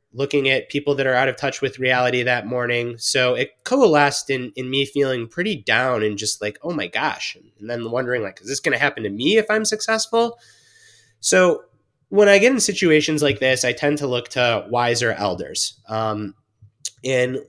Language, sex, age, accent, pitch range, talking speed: English, male, 20-39, American, 120-155 Hz, 200 wpm